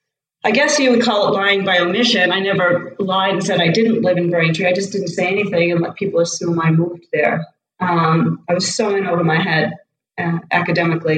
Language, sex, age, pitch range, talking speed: English, female, 40-59, 165-190 Hz, 220 wpm